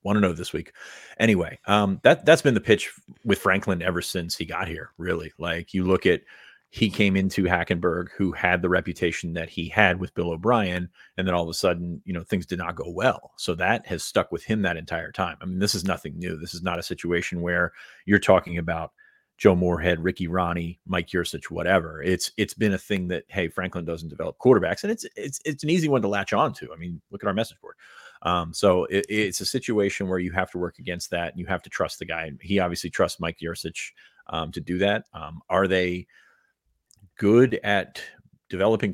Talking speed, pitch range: 225 wpm, 85-95 Hz